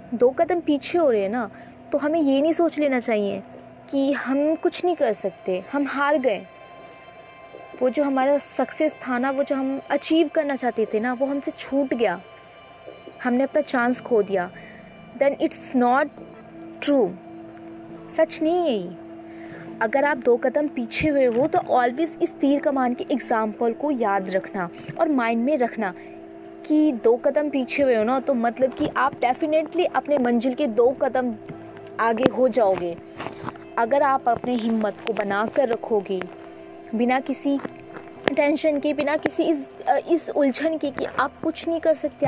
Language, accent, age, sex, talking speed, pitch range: Hindi, native, 20-39, female, 170 wpm, 240-310 Hz